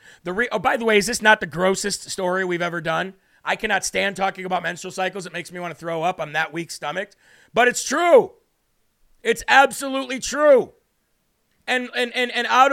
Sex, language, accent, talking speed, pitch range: male, English, American, 195 wpm, 190-235 Hz